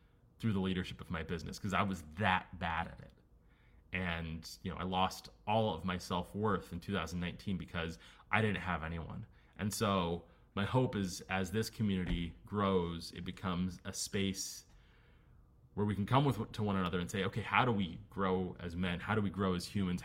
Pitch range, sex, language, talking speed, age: 90-115 Hz, male, English, 195 wpm, 30-49